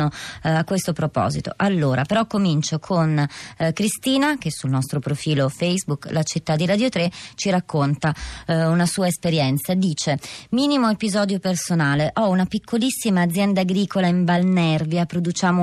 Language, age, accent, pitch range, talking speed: Italian, 20-39, native, 155-185 Hz, 140 wpm